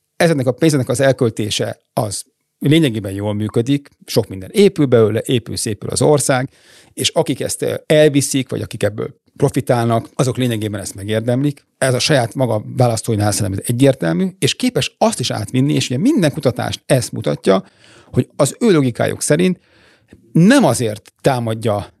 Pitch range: 110-140 Hz